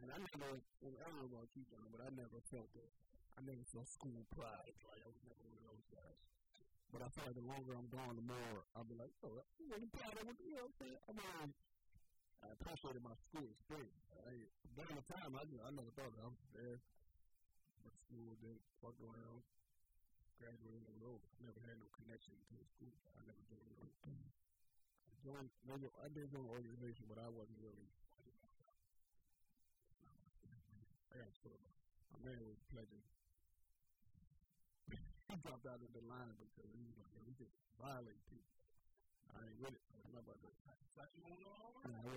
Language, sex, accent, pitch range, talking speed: English, male, American, 115-140 Hz, 195 wpm